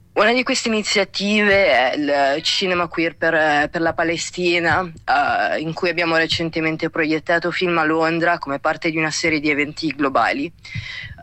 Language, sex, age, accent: Italian, female, 20-39, native